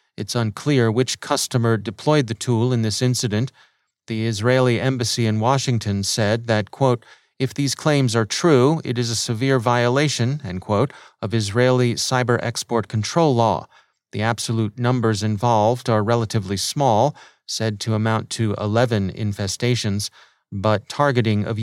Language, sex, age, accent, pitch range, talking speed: English, male, 30-49, American, 110-125 Hz, 145 wpm